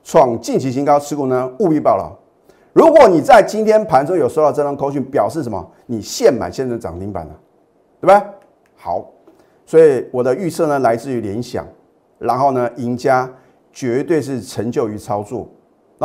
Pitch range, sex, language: 125-170 Hz, male, Chinese